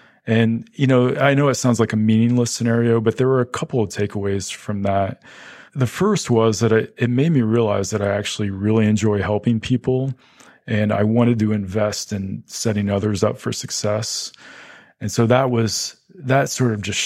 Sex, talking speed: male, 195 wpm